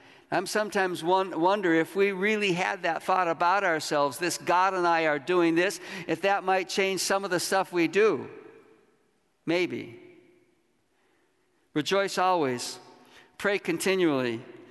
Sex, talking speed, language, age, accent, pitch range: male, 135 wpm, English, 60-79, American, 155-195 Hz